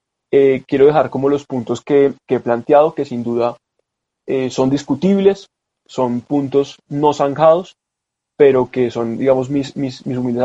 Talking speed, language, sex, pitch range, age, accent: 155 wpm, Spanish, male, 125-150 Hz, 20-39, Colombian